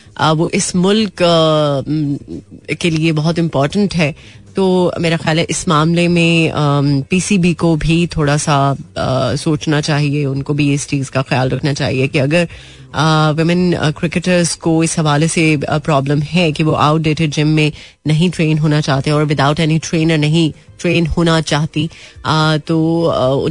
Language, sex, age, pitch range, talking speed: Hindi, female, 30-49, 150-180 Hz, 160 wpm